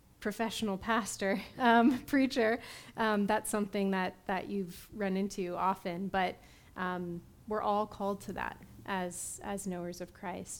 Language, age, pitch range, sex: English, 30-49, 185-220 Hz, female